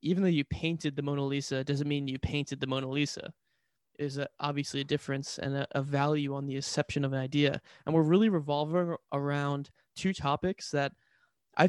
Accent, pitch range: American, 140-160 Hz